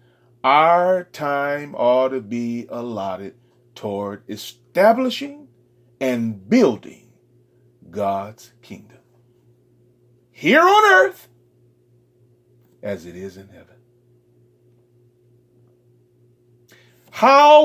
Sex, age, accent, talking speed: male, 40-59, American, 70 wpm